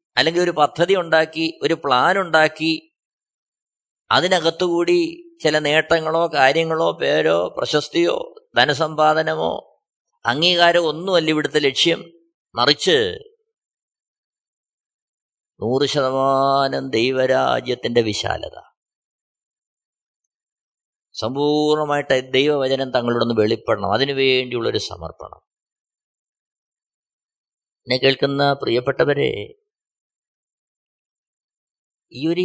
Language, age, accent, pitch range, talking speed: Malayalam, 20-39, native, 145-210 Hz, 65 wpm